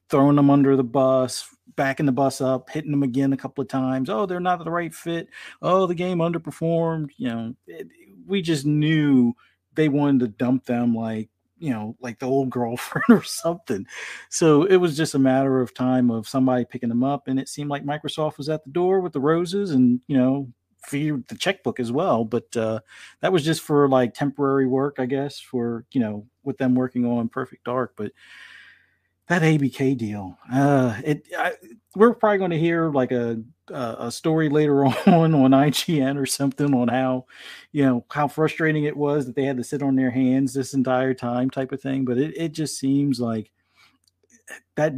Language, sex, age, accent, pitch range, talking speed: English, male, 40-59, American, 125-150 Hz, 200 wpm